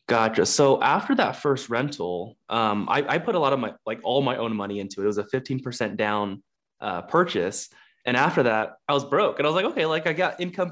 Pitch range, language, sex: 115-145 Hz, English, male